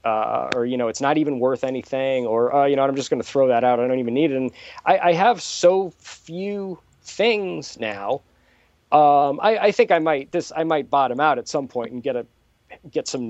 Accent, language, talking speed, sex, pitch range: American, English, 235 wpm, male, 125-155 Hz